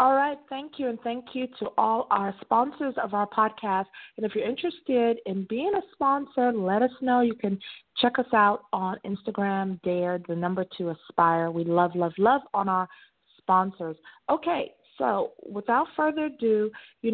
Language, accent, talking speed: English, American, 175 wpm